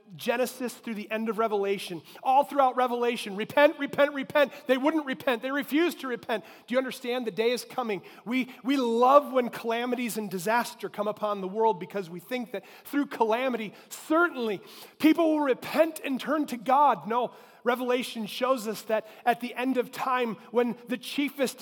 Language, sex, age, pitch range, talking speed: English, male, 30-49, 185-250 Hz, 180 wpm